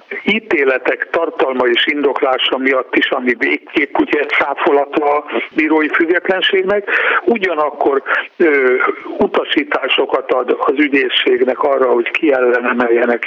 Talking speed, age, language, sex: 100 wpm, 60-79, Hungarian, male